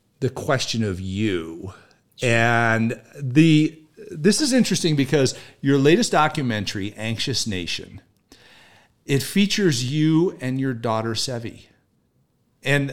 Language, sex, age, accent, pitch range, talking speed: English, male, 50-69, American, 115-170 Hz, 105 wpm